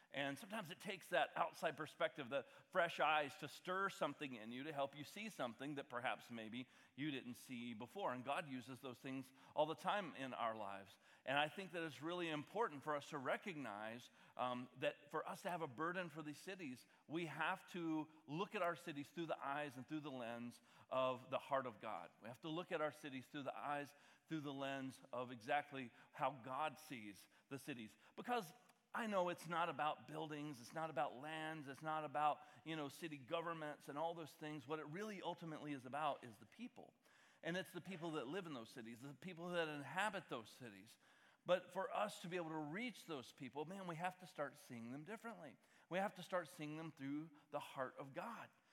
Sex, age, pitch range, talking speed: male, 40-59, 140-180 Hz, 215 wpm